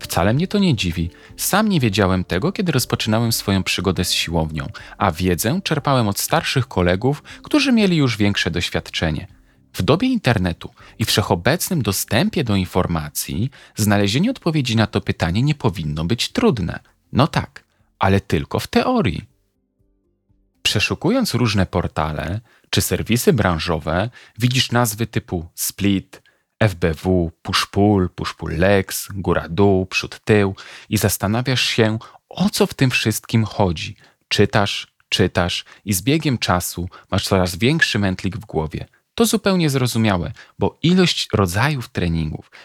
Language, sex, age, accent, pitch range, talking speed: Polish, male, 40-59, native, 90-125 Hz, 130 wpm